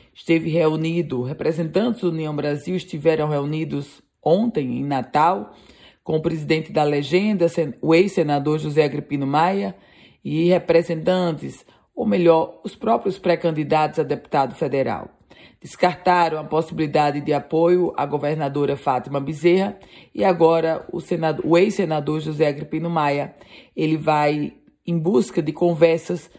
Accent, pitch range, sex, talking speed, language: Brazilian, 150-175 Hz, female, 125 wpm, Portuguese